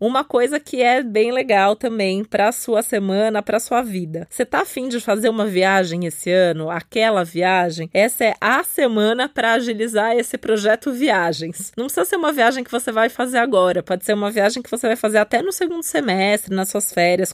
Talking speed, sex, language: 200 wpm, female, Portuguese